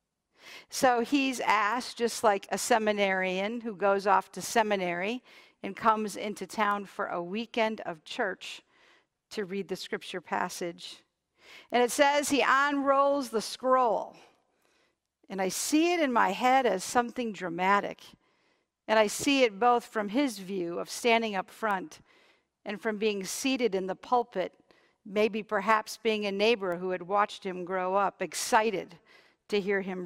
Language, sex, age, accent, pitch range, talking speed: English, female, 50-69, American, 195-250 Hz, 155 wpm